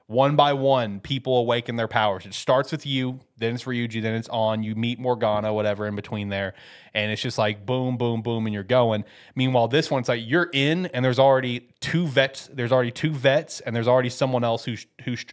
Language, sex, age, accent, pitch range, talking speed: English, male, 20-39, American, 105-130 Hz, 220 wpm